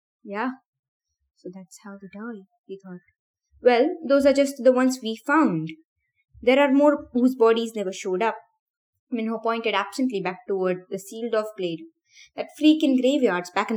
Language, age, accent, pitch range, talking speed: English, 20-39, Indian, 180-230 Hz, 175 wpm